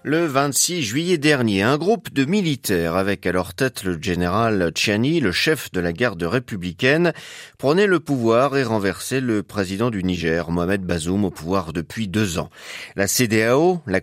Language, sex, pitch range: French, male, 90-130 Hz